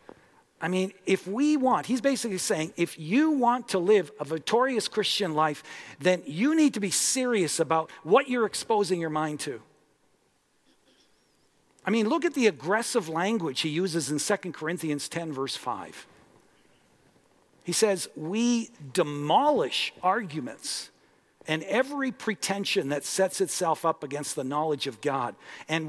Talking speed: 145 wpm